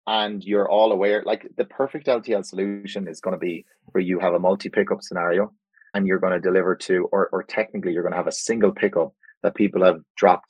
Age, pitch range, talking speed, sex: 30-49, 100-150 Hz, 225 wpm, male